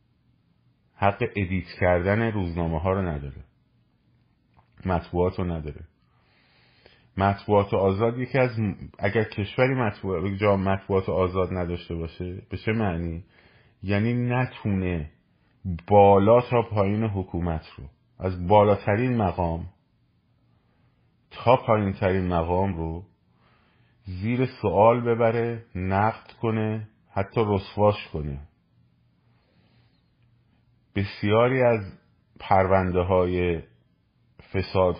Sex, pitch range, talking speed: male, 85-110 Hz, 95 wpm